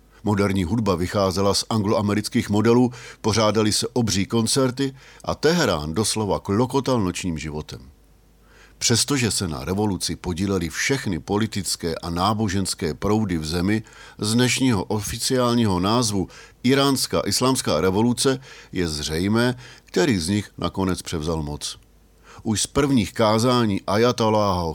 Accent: native